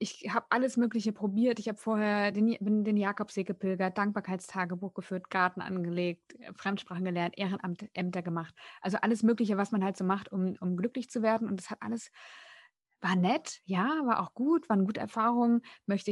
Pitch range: 190-230 Hz